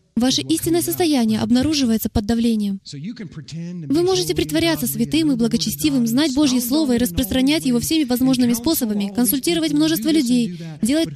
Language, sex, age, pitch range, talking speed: Russian, female, 20-39, 200-290 Hz, 135 wpm